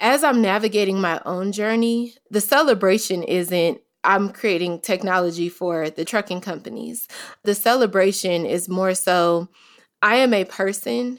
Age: 20-39